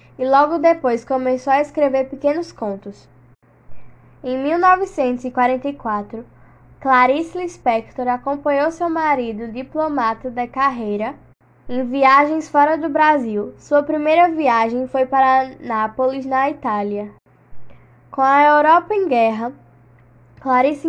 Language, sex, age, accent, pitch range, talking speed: Portuguese, female, 10-29, Brazilian, 230-290 Hz, 105 wpm